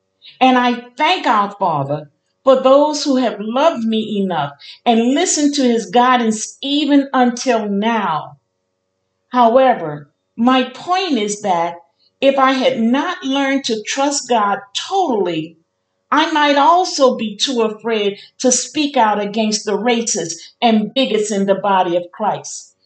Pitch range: 195-275 Hz